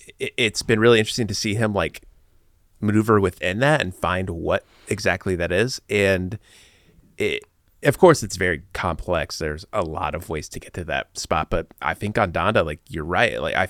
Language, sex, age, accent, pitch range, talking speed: English, male, 30-49, American, 90-110 Hz, 195 wpm